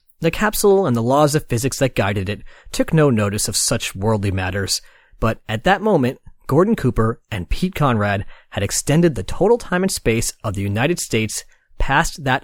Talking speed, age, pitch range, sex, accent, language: 190 wpm, 30-49, 110-185 Hz, male, American, English